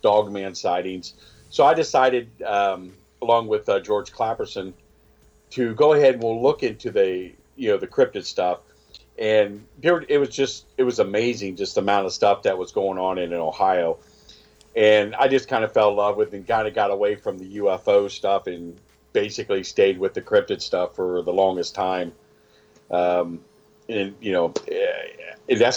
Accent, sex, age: American, male, 50-69